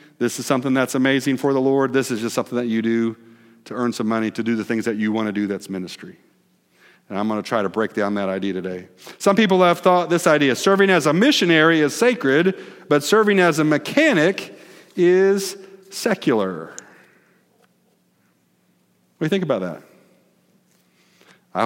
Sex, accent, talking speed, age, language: male, American, 185 wpm, 50-69, English